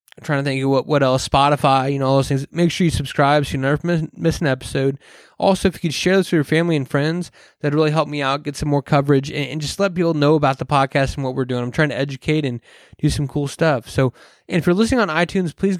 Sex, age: male, 20-39